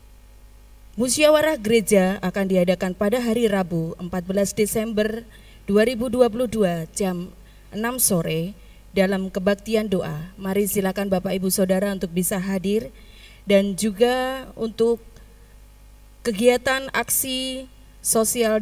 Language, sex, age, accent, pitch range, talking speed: Indonesian, female, 20-39, native, 185-220 Hz, 95 wpm